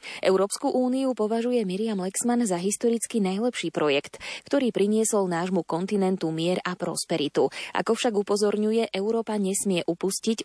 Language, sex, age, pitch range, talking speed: Slovak, female, 20-39, 170-220 Hz, 125 wpm